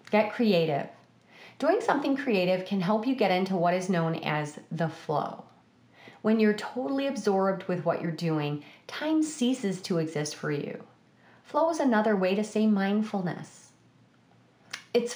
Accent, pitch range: American, 170-225 Hz